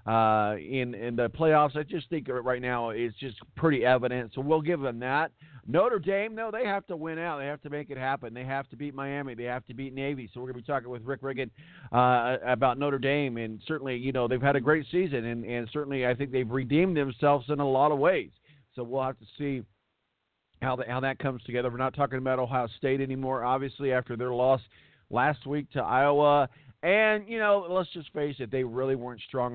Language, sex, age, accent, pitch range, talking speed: English, male, 50-69, American, 120-145 Hz, 235 wpm